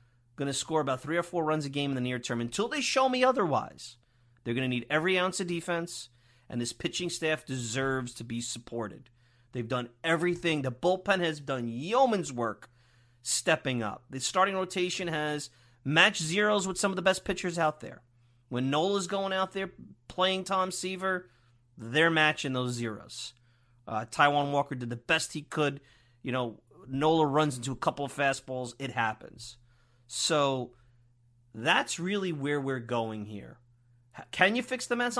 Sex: male